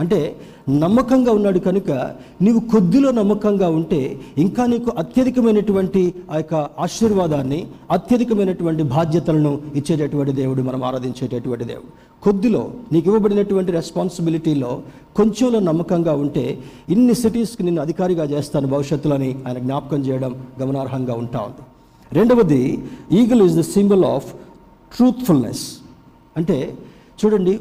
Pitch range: 145-195 Hz